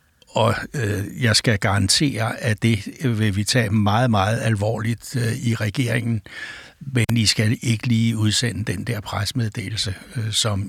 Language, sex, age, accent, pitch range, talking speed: Danish, male, 60-79, native, 105-125 Hz, 135 wpm